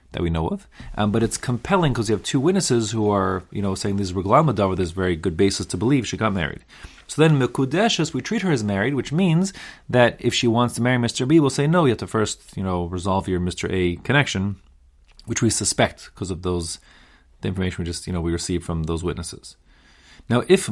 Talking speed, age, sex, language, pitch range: 230 wpm, 30-49, male, English, 95-135 Hz